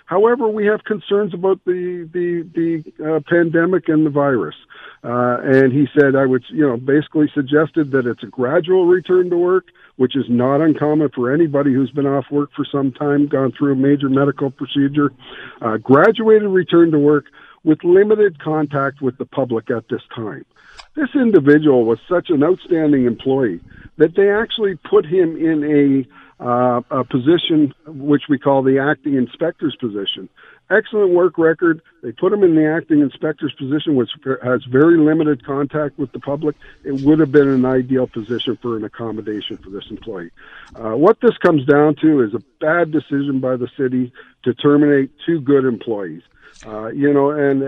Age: 50-69